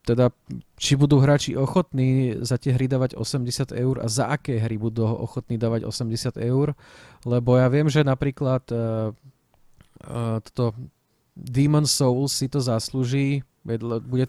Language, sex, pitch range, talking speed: Slovak, male, 115-135 Hz, 145 wpm